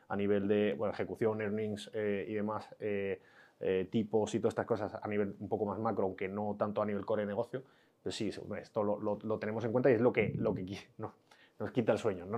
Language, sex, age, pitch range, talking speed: Spanish, male, 20-39, 105-140 Hz, 250 wpm